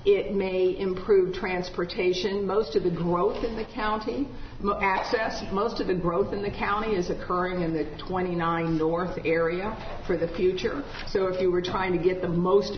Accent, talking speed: American, 180 wpm